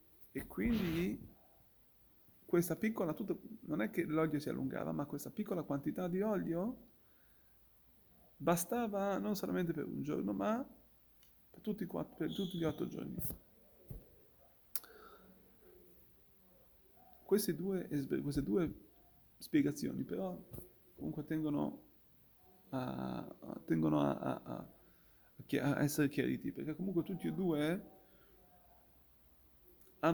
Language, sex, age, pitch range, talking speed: Italian, male, 30-49, 140-180 Hz, 110 wpm